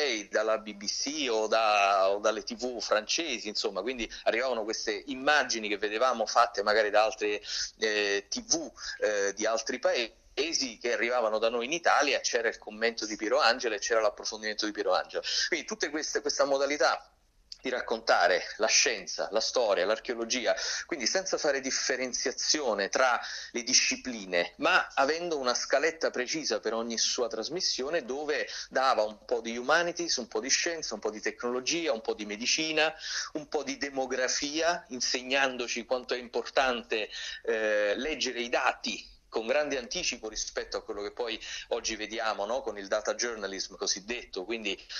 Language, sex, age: Italian, male, 30-49